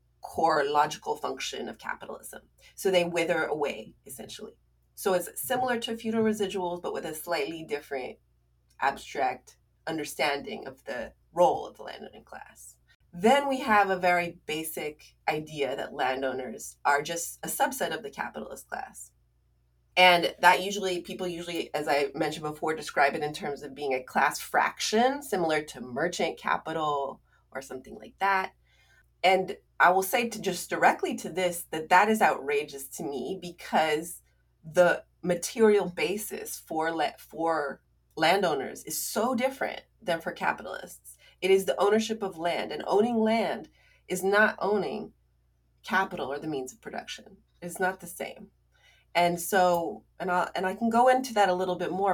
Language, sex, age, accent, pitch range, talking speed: English, female, 30-49, American, 150-200 Hz, 160 wpm